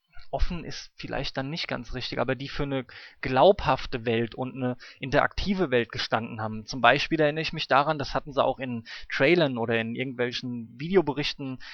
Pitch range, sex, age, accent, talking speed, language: 130-185 Hz, male, 20-39, German, 180 wpm, German